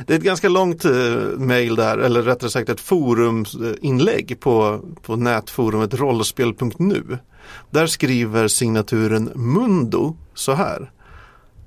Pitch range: 110-150 Hz